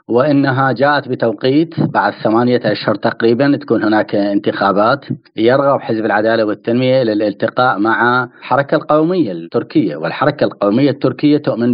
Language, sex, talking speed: Arabic, male, 120 wpm